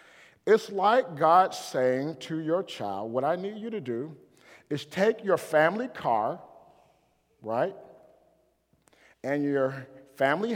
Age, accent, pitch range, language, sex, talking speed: 50-69, American, 170-240 Hz, English, male, 125 wpm